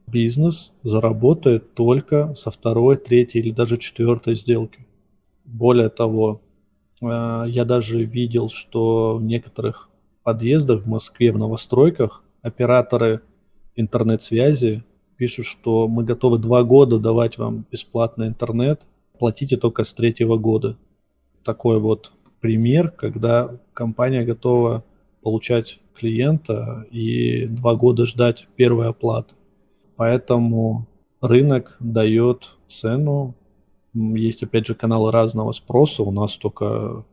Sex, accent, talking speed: male, native, 110 wpm